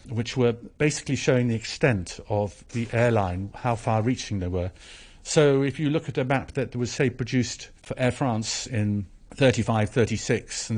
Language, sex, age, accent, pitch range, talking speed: English, male, 50-69, British, 110-135 Hz, 180 wpm